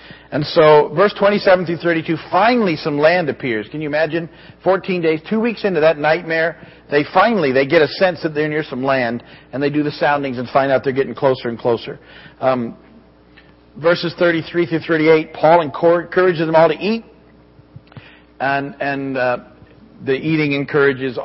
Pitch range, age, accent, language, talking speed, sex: 130-165 Hz, 50-69, American, English, 170 wpm, male